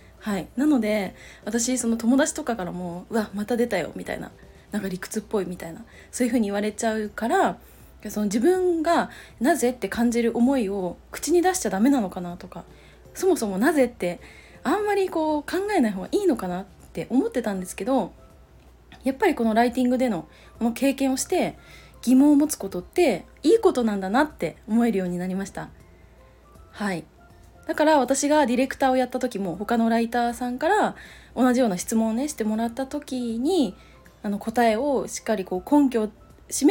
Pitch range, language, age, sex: 210-285 Hz, Japanese, 20-39, female